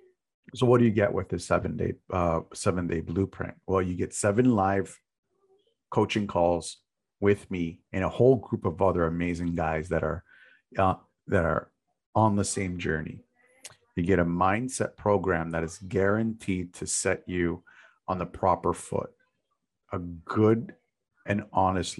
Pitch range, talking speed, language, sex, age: 85-110 Hz, 155 wpm, English, male, 50-69